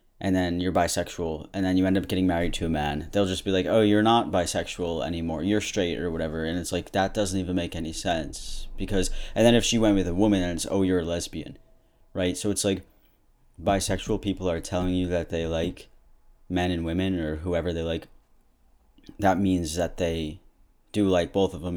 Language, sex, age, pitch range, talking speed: English, male, 30-49, 85-100 Hz, 220 wpm